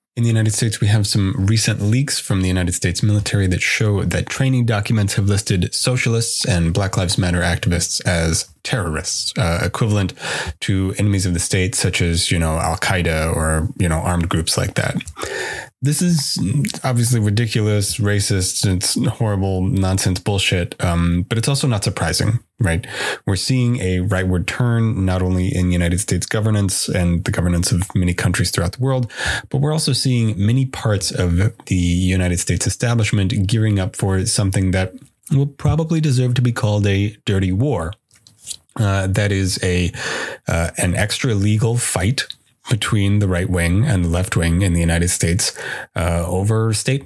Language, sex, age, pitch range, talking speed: English, male, 20-39, 90-115 Hz, 170 wpm